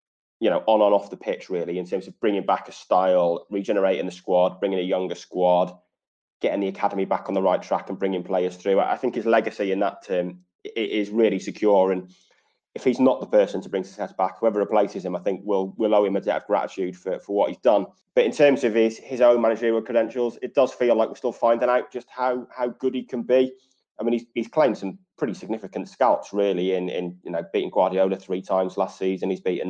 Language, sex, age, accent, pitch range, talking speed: English, male, 20-39, British, 95-115 Hz, 240 wpm